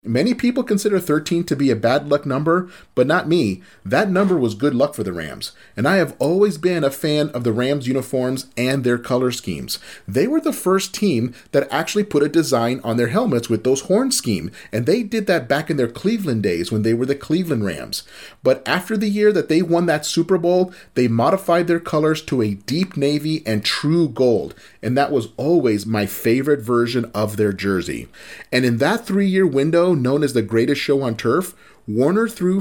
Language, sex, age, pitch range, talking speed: English, male, 30-49, 120-170 Hz, 210 wpm